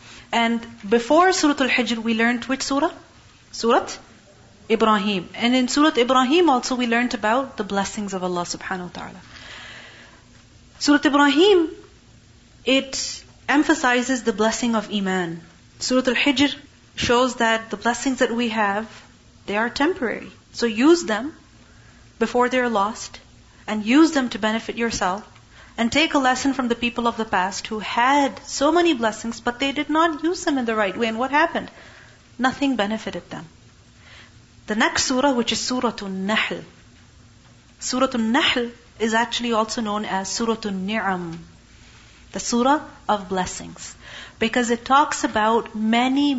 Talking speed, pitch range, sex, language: 145 wpm, 210-265 Hz, female, English